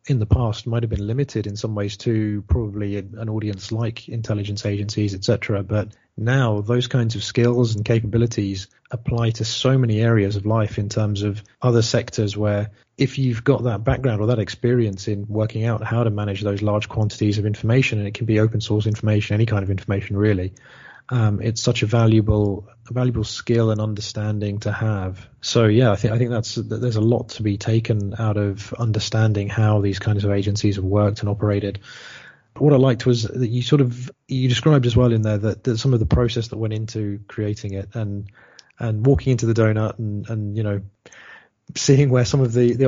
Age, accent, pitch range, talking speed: 30-49, British, 105-120 Hz, 210 wpm